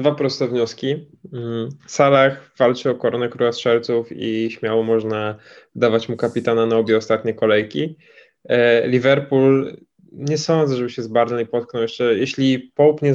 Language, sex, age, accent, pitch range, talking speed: Polish, male, 10-29, native, 115-135 Hz, 135 wpm